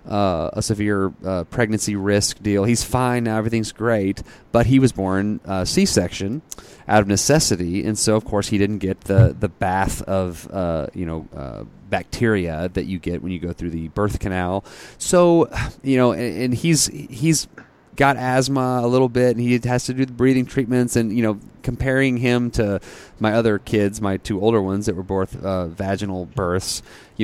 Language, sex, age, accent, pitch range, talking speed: English, male, 30-49, American, 100-125 Hz, 190 wpm